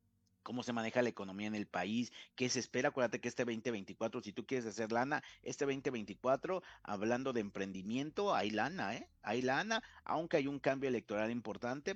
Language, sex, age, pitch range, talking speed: Spanish, male, 50-69, 100-125 Hz, 180 wpm